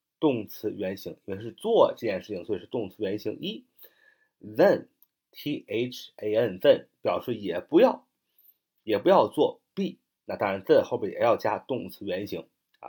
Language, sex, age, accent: Chinese, male, 30-49, native